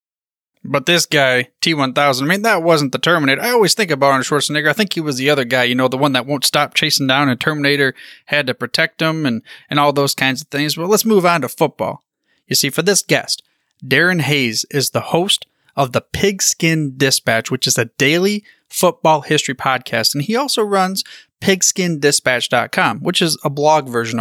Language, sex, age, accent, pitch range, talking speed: English, male, 20-39, American, 130-180 Hz, 205 wpm